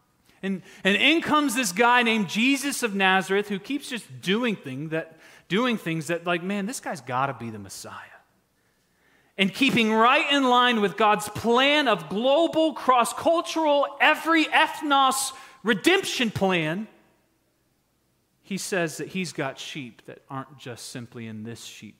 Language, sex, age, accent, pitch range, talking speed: English, male, 30-49, American, 130-215 Hz, 145 wpm